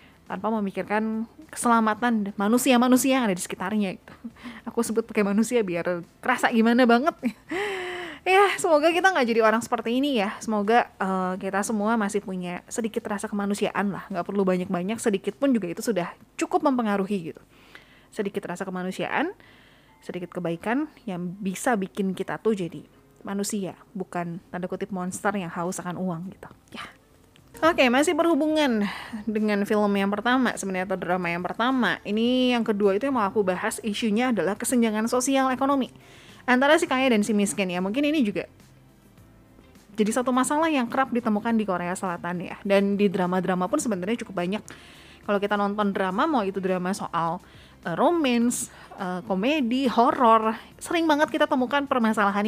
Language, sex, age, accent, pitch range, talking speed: Indonesian, female, 20-39, native, 190-245 Hz, 160 wpm